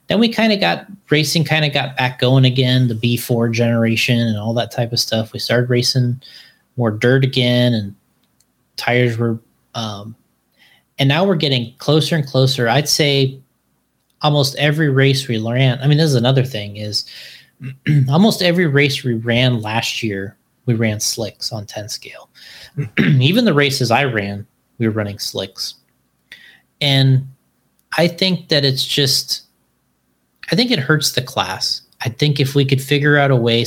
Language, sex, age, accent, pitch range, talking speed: English, male, 20-39, American, 115-140 Hz, 170 wpm